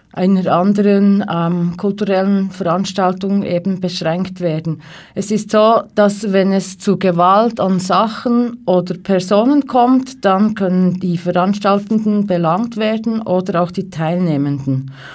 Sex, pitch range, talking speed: female, 180-210 Hz, 125 wpm